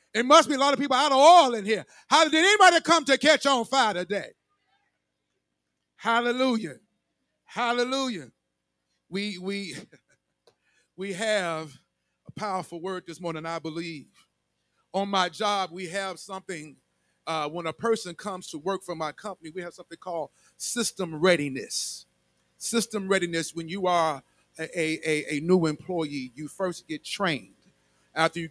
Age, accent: 40-59, American